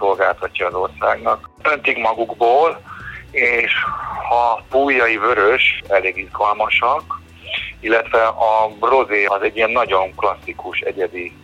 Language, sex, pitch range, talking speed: Hungarian, male, 90-110 Hz, 105 wpm